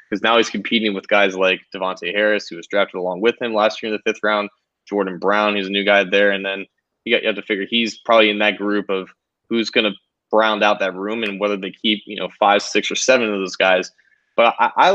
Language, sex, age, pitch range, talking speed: English, male, 20-39, 100-115 Hz, 260 wpm